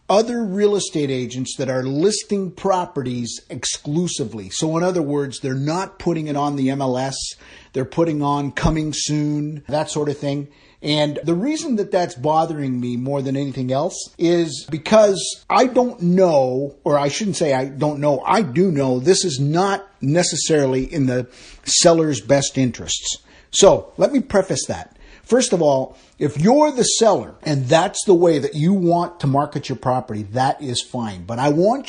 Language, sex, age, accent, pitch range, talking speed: English, male, 50-69, American, 135-185 Hz, 175 wpm